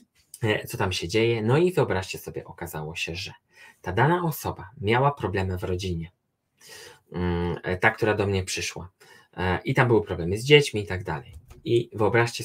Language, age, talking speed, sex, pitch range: Polish, 20-39, 165 wpm, male, 100-145 Hz